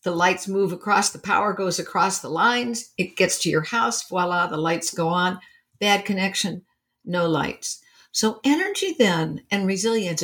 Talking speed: 170 wpm